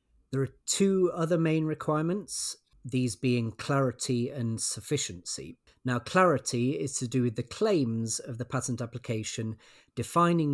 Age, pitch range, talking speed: 40-59, 110-145 Hz, 135 wpm